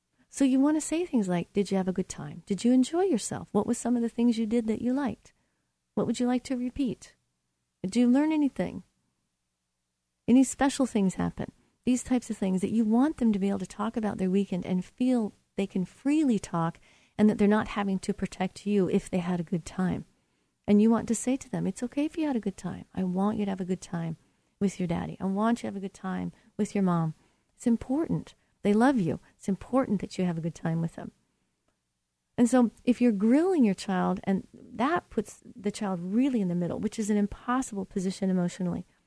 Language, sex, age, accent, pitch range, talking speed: English, female, 40-59, American, 185-230 Hz, 235 wpm